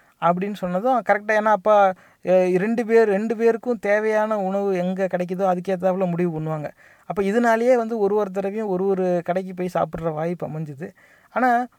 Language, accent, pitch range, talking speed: English, Indian, 180-225 Hz, 135 wpm